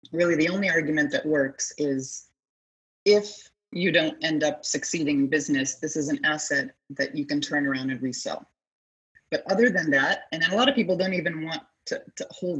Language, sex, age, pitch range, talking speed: English, female, 30-49, 140-165 Hz, 195 wpm